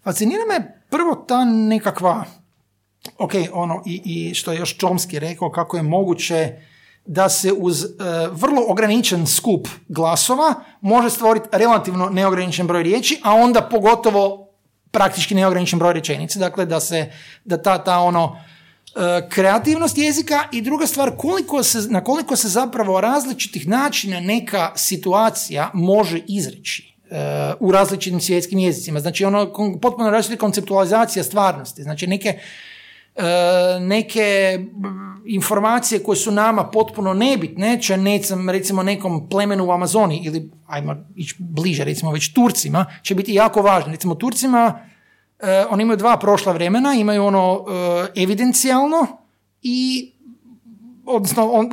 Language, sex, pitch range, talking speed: Croatian, male, 180-230 Hz, 135 wpm